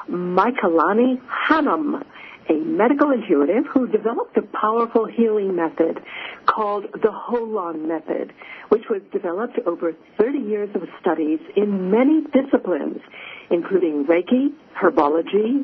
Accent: American